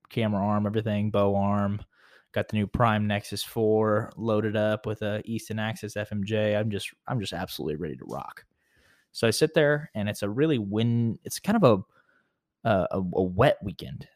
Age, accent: 20-39, American